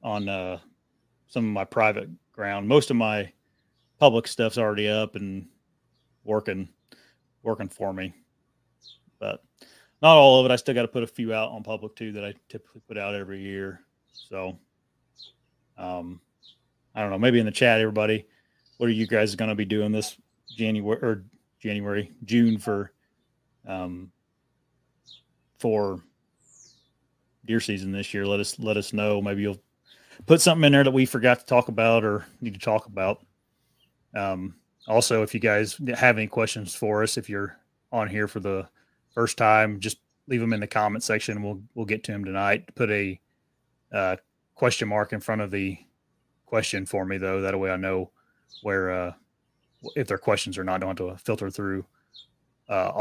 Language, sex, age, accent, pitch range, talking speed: English, male, 30-49, American, 95-115 Hz, 175 wpm